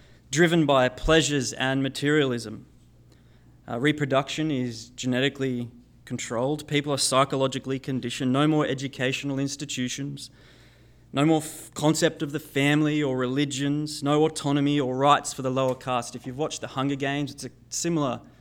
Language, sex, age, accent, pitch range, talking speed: English, male, 20-39, Australian, 120-145 Hz, 140 wpm